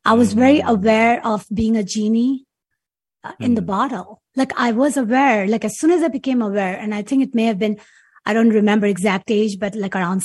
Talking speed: 215 wpm